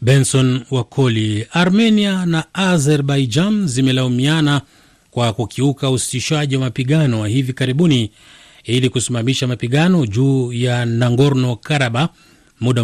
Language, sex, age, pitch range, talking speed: Swahili, male, 40-59, 120-155 Hz, 95 wpm